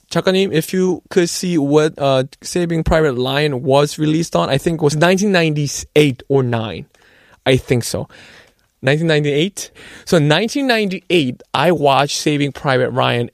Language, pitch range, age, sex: Korean, 140-195 Hz, 20-39, male